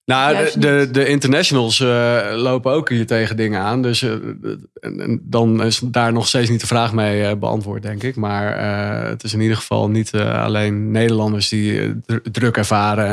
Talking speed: 185 wpm